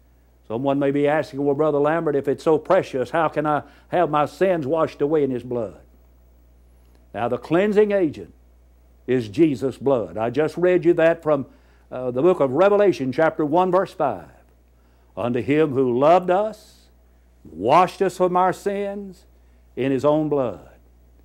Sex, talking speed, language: male, 165 wpm, English